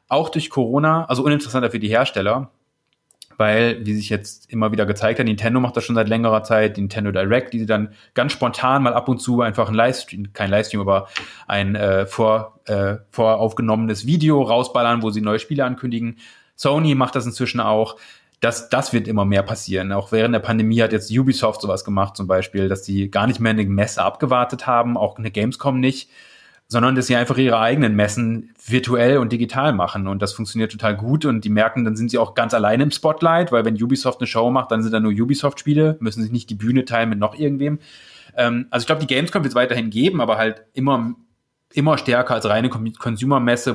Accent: German